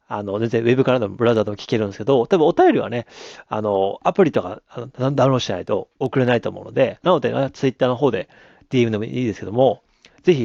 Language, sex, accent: Japanese, male, native